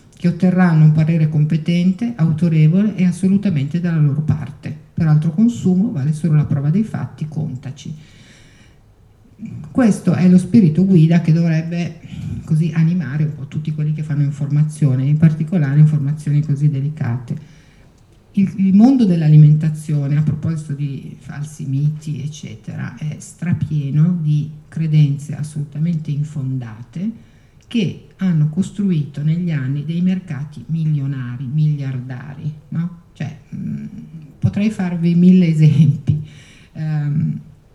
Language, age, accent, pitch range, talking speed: Italian, 50-69, native, 145-175 Hz, 120 wpm